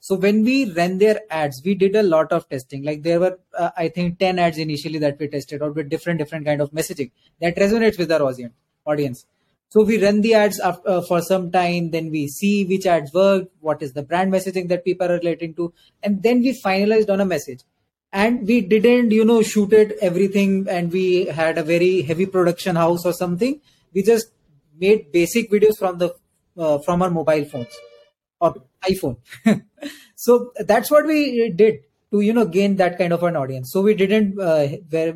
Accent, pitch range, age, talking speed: native, 155-200 Hz, 20-39, 205 wpm